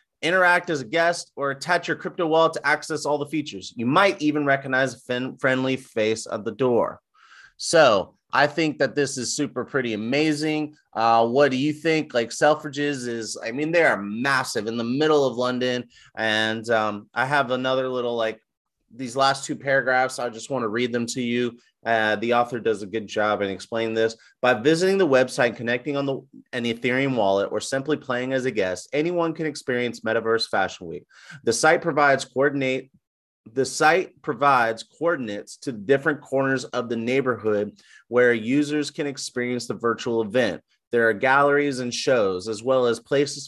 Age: 30-49